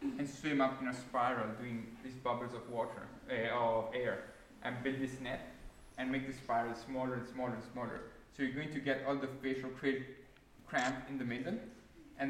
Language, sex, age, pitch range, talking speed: English, male, 20-39, 115-140 Hz, 200 wpm